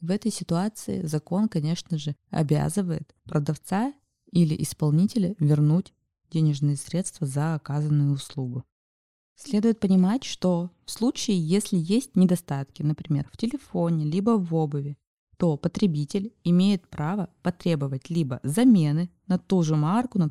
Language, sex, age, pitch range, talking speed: Russian, female, 20-39, 150-190 Hz, 125 wpm